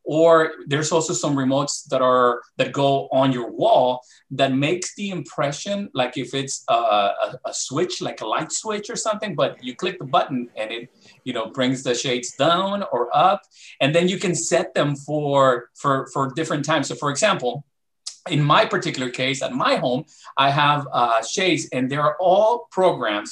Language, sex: English, male